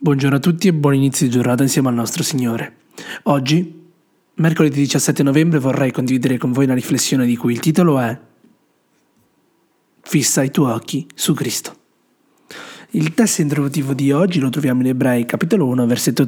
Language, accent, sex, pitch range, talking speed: Italian, native, male, 130-165 Hz, 165 wpm